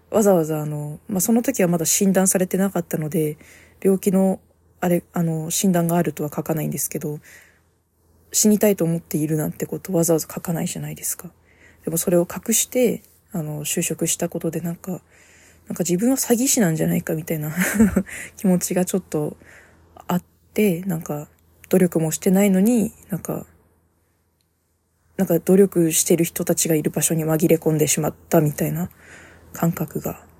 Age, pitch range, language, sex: 20-39, 150-185 Hz, Japanese, female